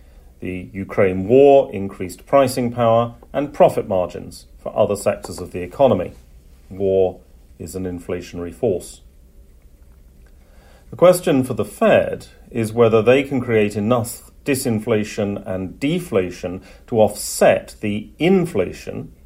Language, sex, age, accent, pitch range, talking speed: English, male, 40-59, British, 85-120 Hz, 120 wpm